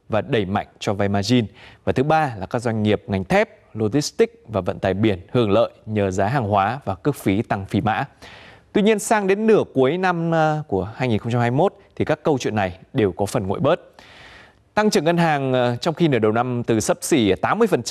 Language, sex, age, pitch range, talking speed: Vietnamese, male, 20-39, 105-155 Hz, 215 wpm